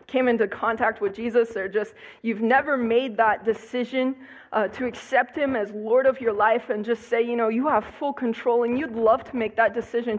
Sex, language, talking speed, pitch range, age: female, English, 220 wpm, 225-260 Hz, 20-39